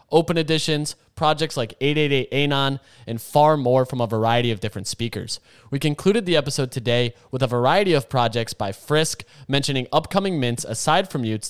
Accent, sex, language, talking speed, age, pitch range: American, male, English, 165 wpm, 20-39, 135-190 Hz